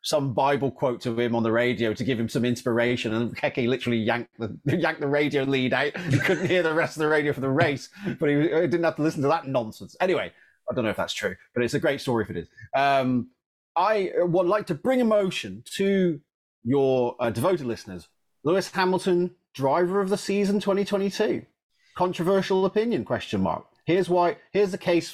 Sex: male